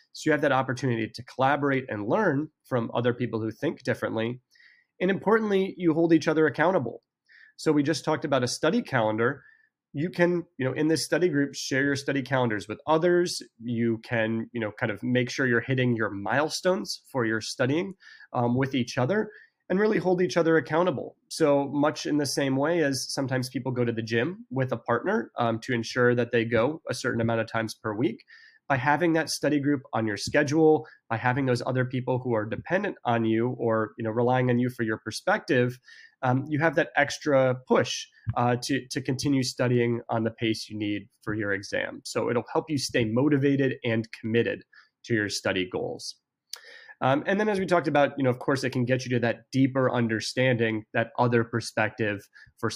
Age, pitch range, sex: 30-49, 115-155 Hz, male